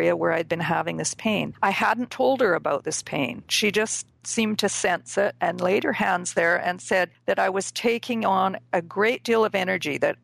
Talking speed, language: 215 wpm, English